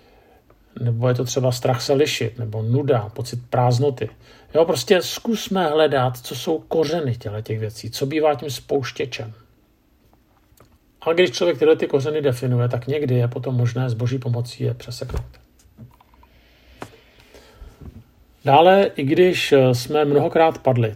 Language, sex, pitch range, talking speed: Czech, male, 120-140 Hz, 135 wpm